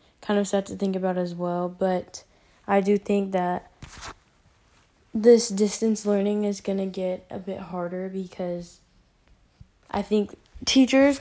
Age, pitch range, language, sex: 10-29, 185-215 Hz, English, female